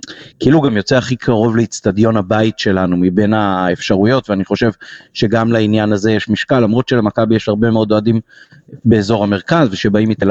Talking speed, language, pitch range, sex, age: 155 wpm, Hebrew, 105-120 Hz, male, 30-49